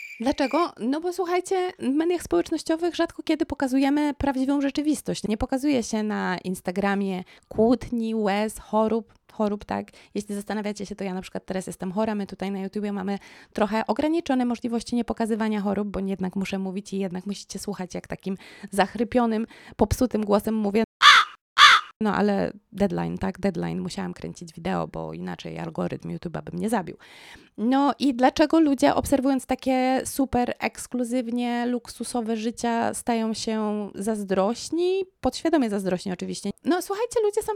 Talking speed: 145 wpm